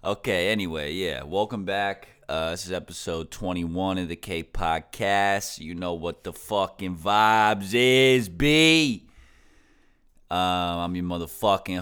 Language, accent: English, American